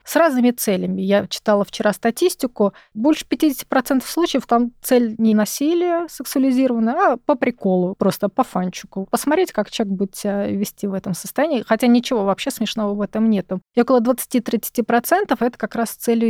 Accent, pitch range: native, 190-245 Hz